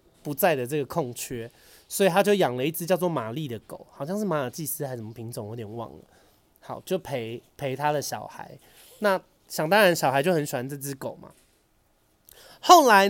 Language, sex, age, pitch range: Chinese, male, 30-49, 135-195 Hz